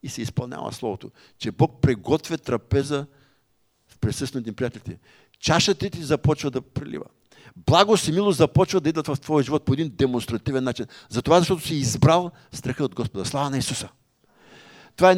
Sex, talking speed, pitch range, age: male, 165 wpm, 125-155 Hz, 50-69